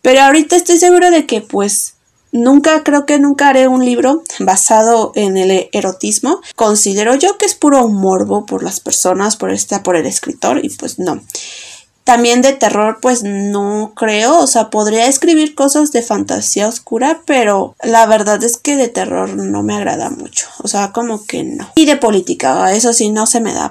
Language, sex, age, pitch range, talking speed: Spanish, female, 20-39, 205-275 Hz, 190 wpm